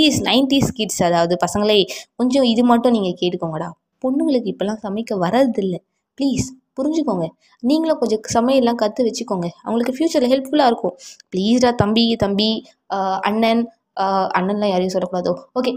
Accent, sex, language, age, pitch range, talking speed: native, female, Tamil, 20-39, 200-260 Hz, 45 wpm